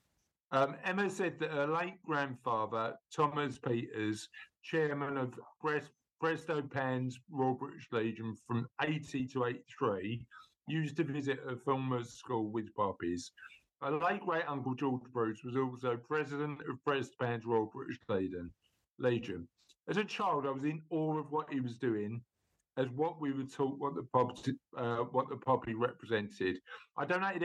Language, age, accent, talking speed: English, 50-69, British, 155 wpm